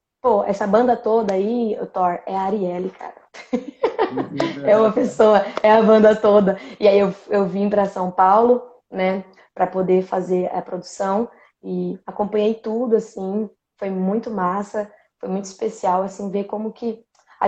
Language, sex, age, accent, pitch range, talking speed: Portuguese, female, 20-39, Brazilian, 190-220 Hz, 155 wpm